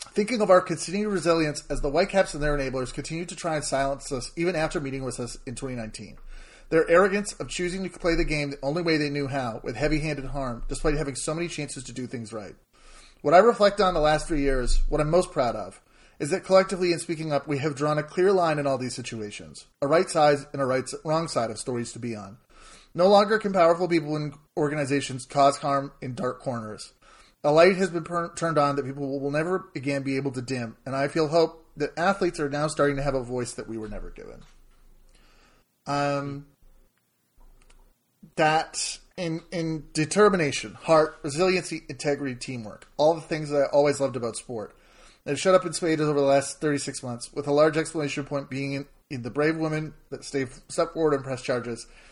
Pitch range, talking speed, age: 135-165 Hz, 210 wpm, 30-49